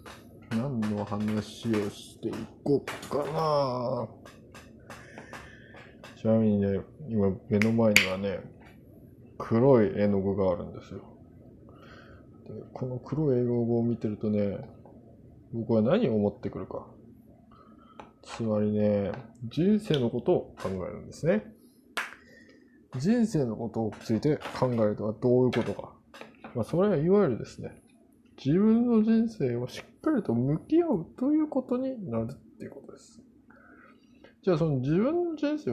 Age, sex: 20-39, male